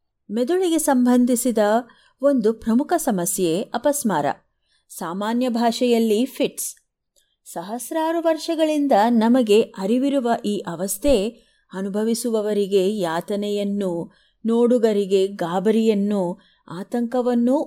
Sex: female